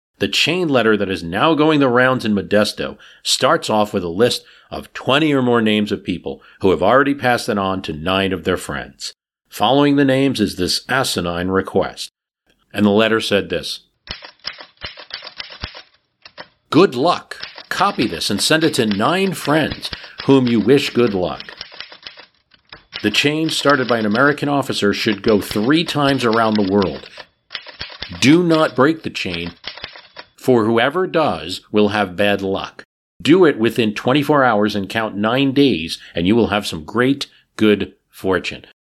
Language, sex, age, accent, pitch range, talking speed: English, male, 50-69, American, 100-130 Hz, 160 wpm